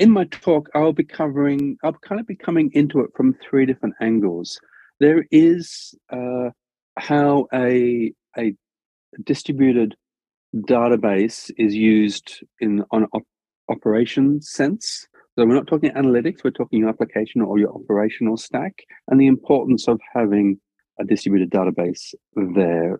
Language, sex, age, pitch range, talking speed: English, male, 40-59, 95-135 Hz, 140 wpm